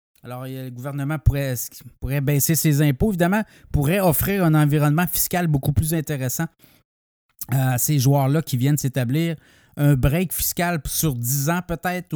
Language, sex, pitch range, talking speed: French, male, 130-165 Hz, 150 wpm